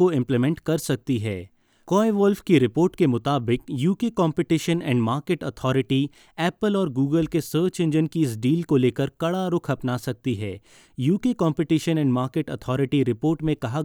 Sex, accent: male, native